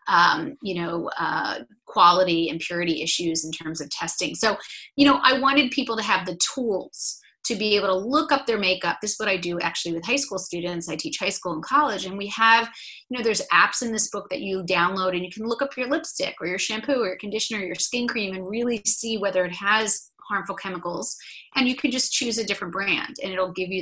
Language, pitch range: English, 180-225 Hz